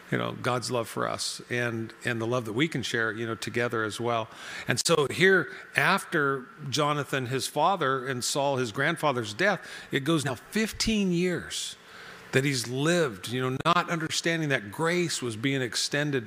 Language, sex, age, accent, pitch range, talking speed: English, male, 50-69, American, 120-150 Hz, 175 wpm